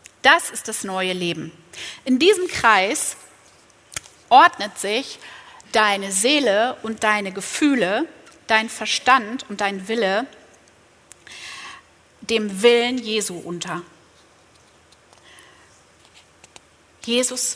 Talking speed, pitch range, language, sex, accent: 85 wpm, 185-265 Hz, German, female, German